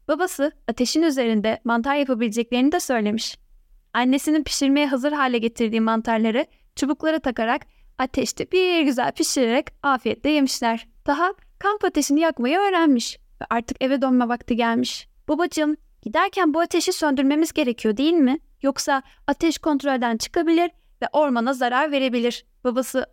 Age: 10-29